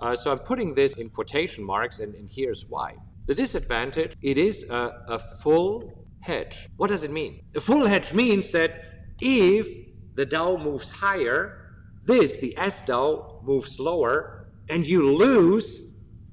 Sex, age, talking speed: male, 50-69, 160 wpm